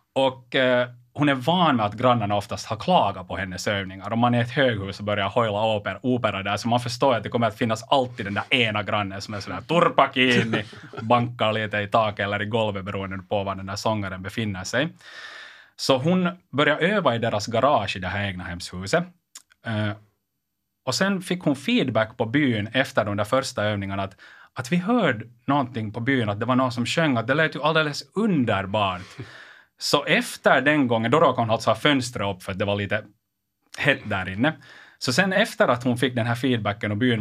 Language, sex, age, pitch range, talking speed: Swedish, male, 30-49, 105-135 Hz, 215 wpm